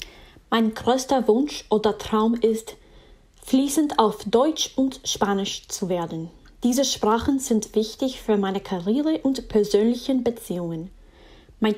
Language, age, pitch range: German, 10-29, 200-245 Hz